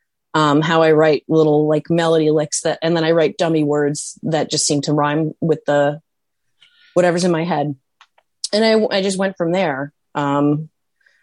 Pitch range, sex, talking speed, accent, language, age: 155-200 Hz, female, 180 wpm, American, English, 30-49